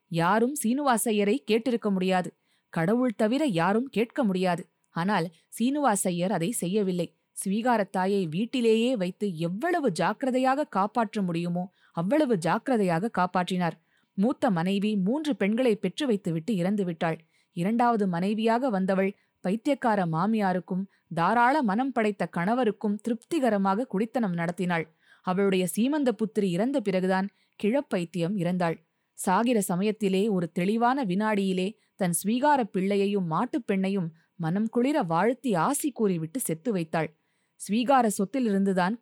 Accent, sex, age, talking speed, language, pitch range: native, female, 20-39, 105 wpm, Tamil, 185-240 Hz